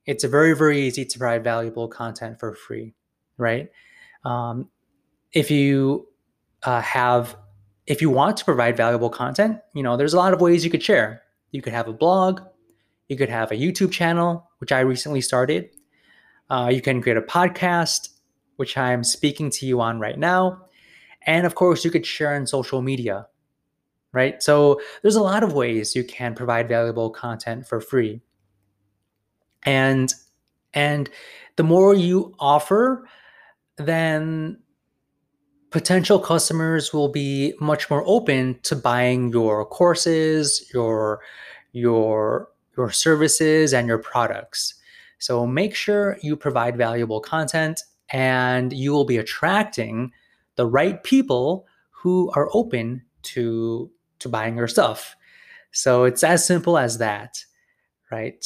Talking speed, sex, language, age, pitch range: 145 wpm, male, English, 20-39, 120-165 Hz